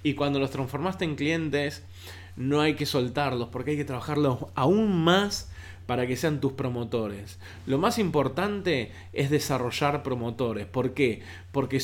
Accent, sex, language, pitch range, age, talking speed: Argentinian, male, Spanish, 120-155 Hz, 20-39, 150 wpm